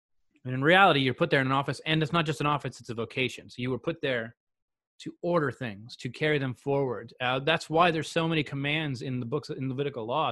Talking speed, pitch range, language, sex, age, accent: 250 wpm, 125-155 Hz, English, male, 30-49, American